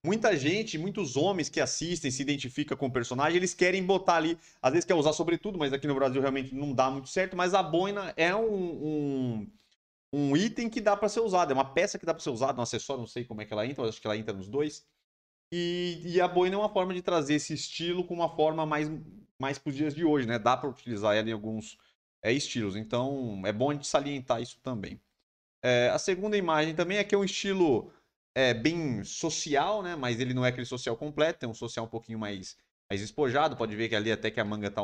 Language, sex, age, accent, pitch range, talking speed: Portuguese, male, 30-49, Brazilian, 120-175 Hz, 245 wpm